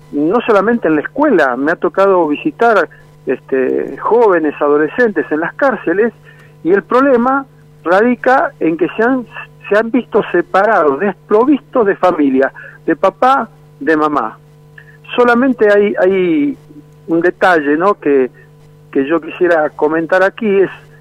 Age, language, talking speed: 60-79, Spanish, 135 wpm